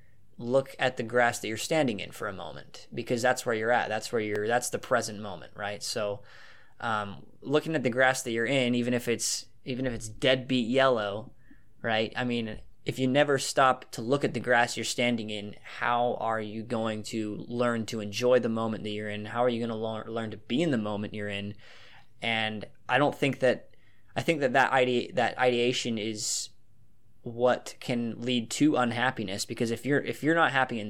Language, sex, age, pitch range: English, male, 20-39, 110-130 Hz